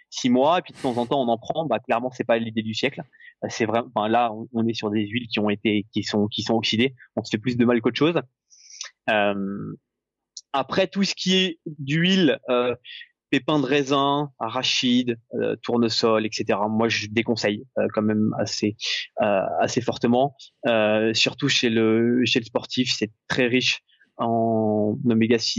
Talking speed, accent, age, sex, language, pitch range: 185 wpm, French, 20-39, male, French, 115-145 Hz